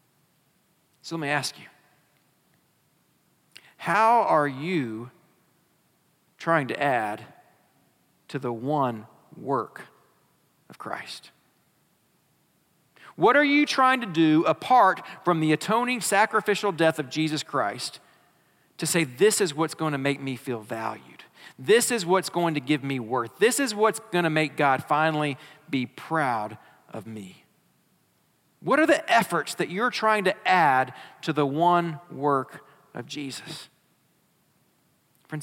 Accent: American